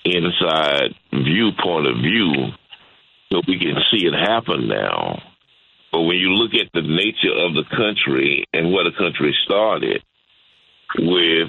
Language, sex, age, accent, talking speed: English, male, 50-69, American, 145 wpm